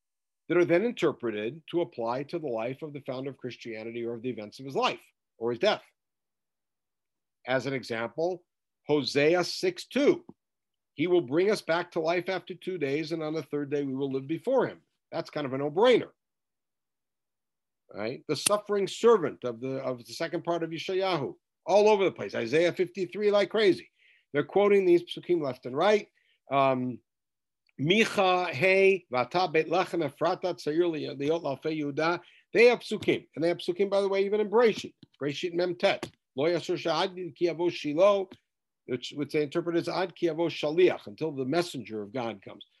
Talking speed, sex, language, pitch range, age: 150 wpm, male, English, 145-200 Hz, 60-79